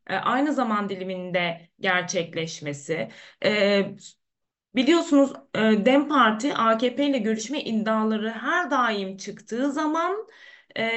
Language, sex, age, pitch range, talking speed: Turkish, female, 20-39, 200-285 Hz, 105 wpm